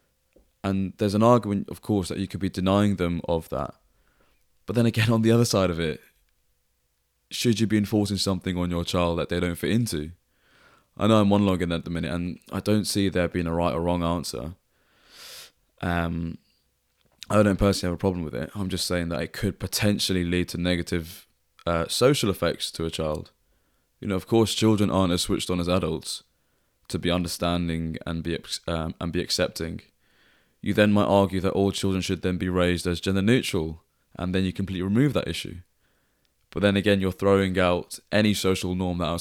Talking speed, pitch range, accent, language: 200 wpm, 85-100 Hz, British, English